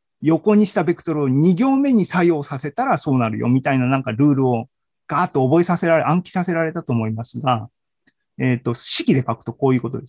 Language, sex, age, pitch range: Japanese, male, 40-59, 130-210 Hz